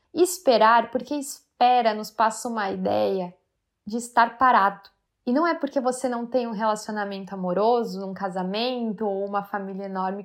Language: Portuguese